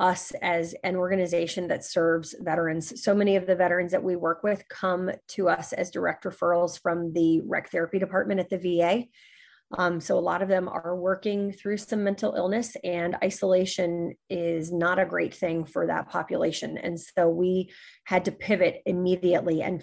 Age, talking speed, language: 30-49, 180 wpm, English